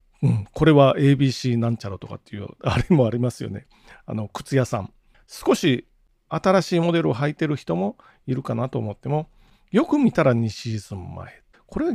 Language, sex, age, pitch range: Japanese, male, 40-59, 115-170 Hz